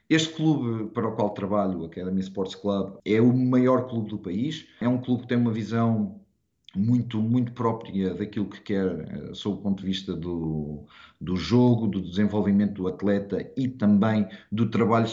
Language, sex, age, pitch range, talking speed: Portuguese, male, 50-69, 95-110 Hz, 175 wpm